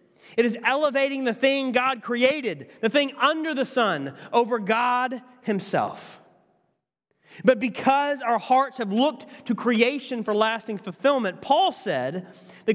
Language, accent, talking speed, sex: English, American, 135 wpm, male